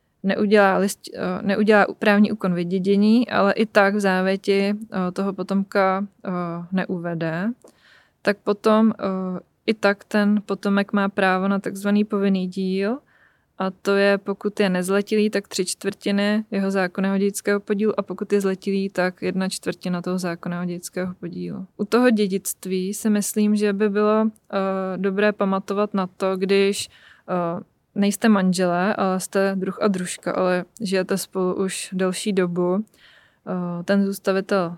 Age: 20-39